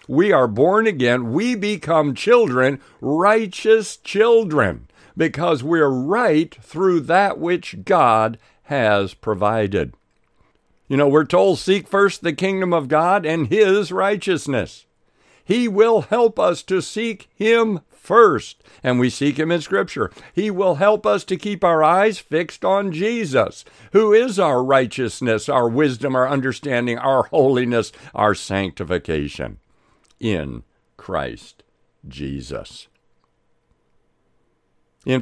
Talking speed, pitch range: 125 wpm, 125-200 Hz